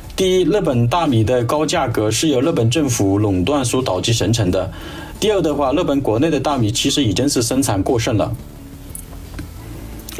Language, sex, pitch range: Chinese, male, 110-140 Hz